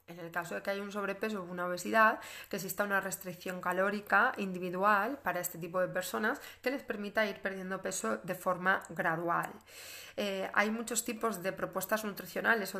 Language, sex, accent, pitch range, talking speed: Spanish, female, Spanish, 180-210 Hz, 185 wpm